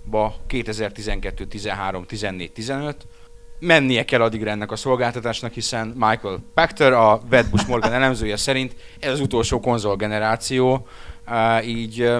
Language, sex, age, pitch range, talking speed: Hungarian, male, 30-49, 95-120 Hz, 115 wpm